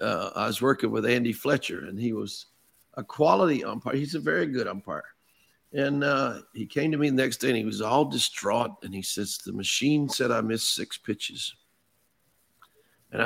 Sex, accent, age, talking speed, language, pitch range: male, American, 50-69, 195 wpm, English, 120-155 Hz